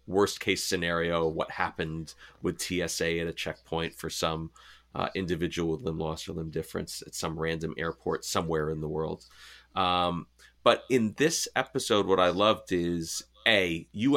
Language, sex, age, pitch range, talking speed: English, male, 30-49, 80-95 Hz, 165 wpm